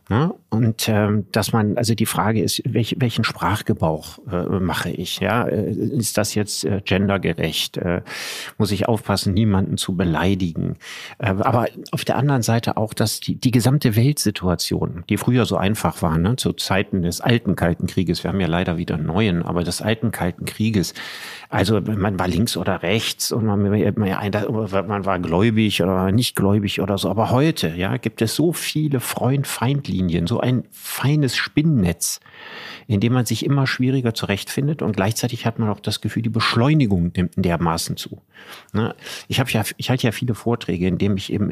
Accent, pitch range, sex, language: German, 95-115 Hz, male, German